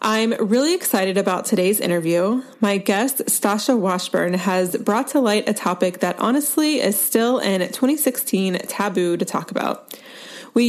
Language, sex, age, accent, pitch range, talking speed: English, female, 20-39, American, 185-235 Hz, 150 wpm